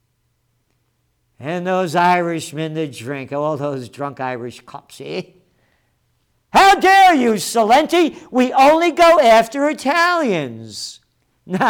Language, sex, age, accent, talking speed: English, male, 50-69, American, 110 wpm